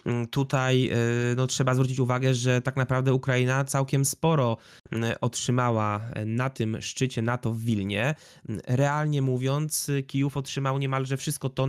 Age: 20-39